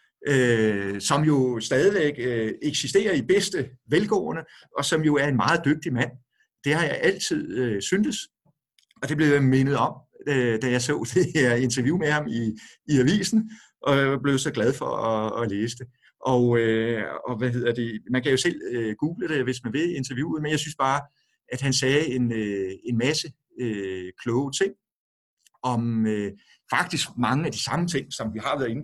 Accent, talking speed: native, 195 wpm